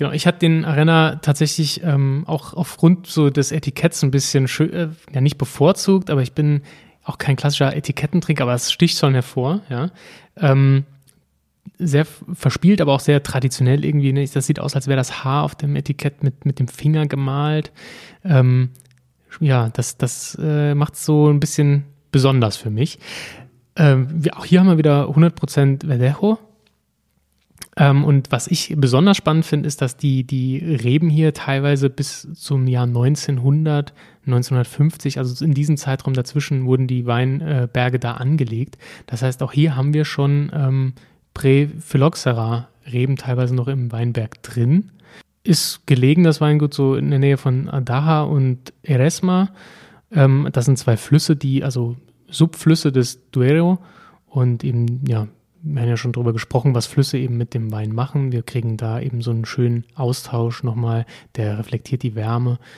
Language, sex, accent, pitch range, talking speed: German, male, German, 125-150 Hz, 165 wpm